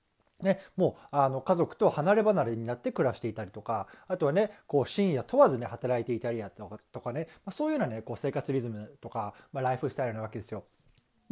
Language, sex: Japanese, male